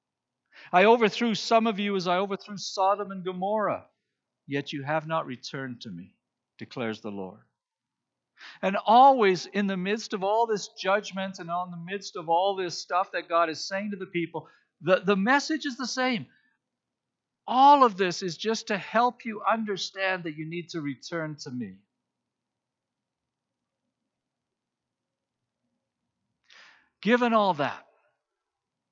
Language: English